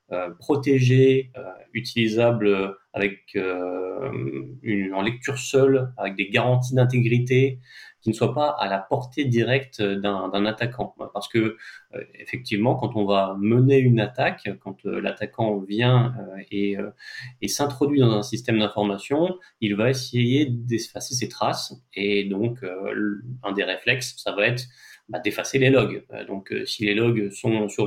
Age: 30-49